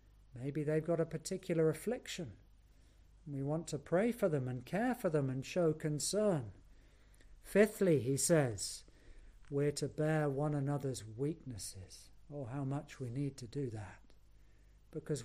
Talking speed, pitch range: 145 wpm, 105-165 Hz